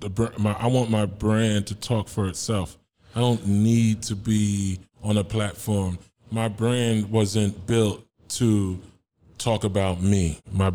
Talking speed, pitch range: 140 wpm, 100-130 Hz